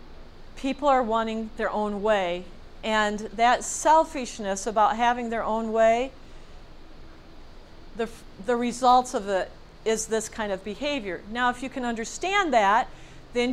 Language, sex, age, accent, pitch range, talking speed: English, female, 50-69, American, 220-265 Hz, 135 wpm